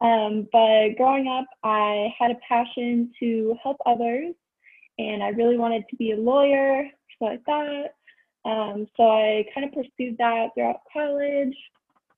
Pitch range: 215-260 Hz